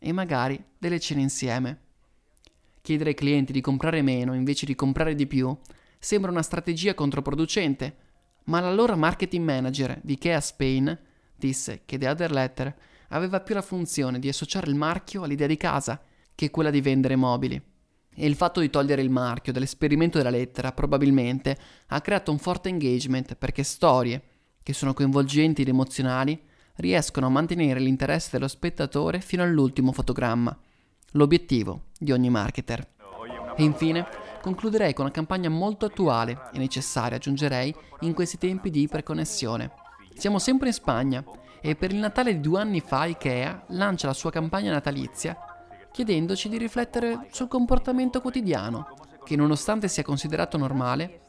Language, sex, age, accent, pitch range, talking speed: Italian, male, 20-39, native, 130-170 Hz, 150 wpm